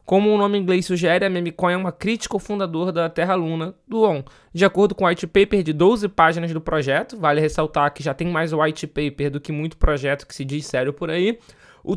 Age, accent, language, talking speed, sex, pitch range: 20-39, Brazilian, Portuguese, 235 wpm, male, 150-190 Hz